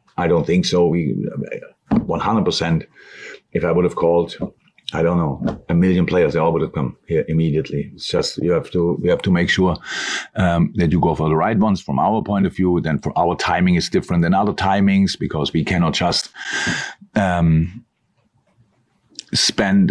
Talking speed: 195 wpm